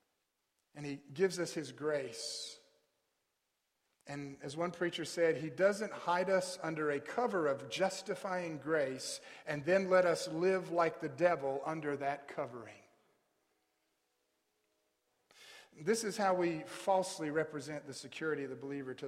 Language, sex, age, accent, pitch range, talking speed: English, male, 40-59, American, 140-185 Hz, 140 wpm